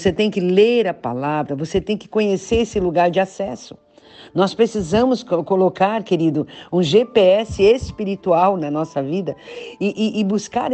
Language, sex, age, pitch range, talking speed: Portuguese, female, 50-69, 185-250 Hz, 155 wpm